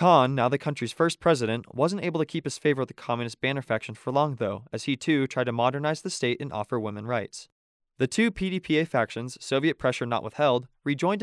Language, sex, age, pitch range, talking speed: English, male, 20-39, 115-150 Hz, 220 wpm